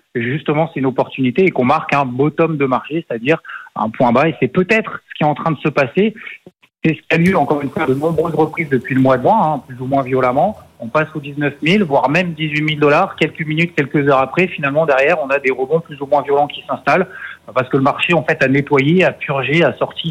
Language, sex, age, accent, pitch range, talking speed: French, male, 30-49, French, 140-175 Hz, 255 wpm